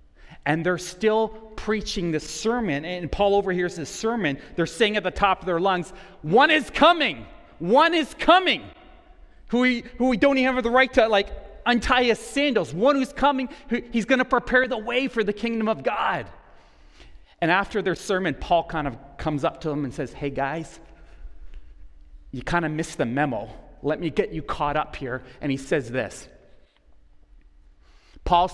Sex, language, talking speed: male, English, 175 wpm